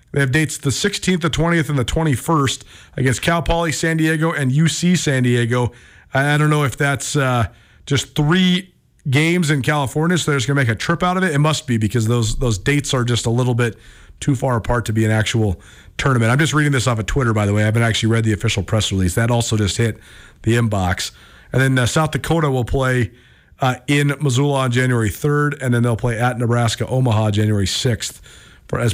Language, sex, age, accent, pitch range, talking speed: English, male, 40-59, American, 110-145 Hz, 225 wpm